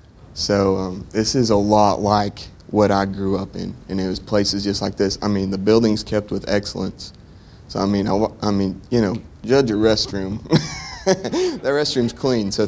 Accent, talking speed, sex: American, 195 wpm, male